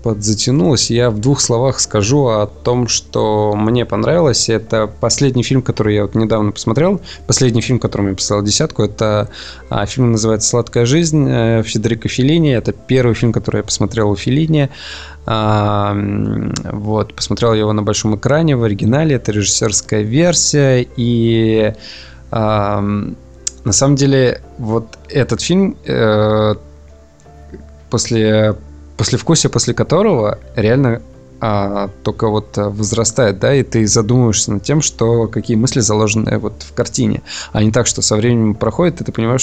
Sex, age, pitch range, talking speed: male, 20-39, 105-120 Hz, 140 wpm